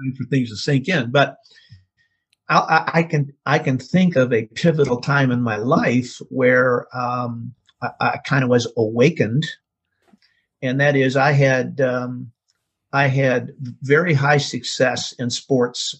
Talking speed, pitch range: 155 wpm, 125-150 Hz